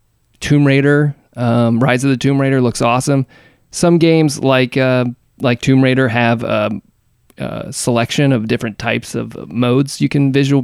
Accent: American